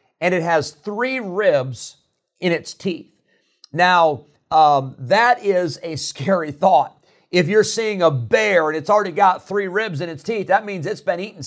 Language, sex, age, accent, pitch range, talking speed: English, male, 50-69, American, 145-195 Hz, 180 wpm